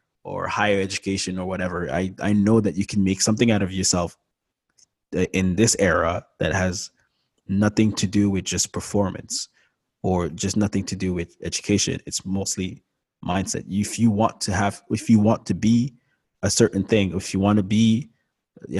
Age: 20-39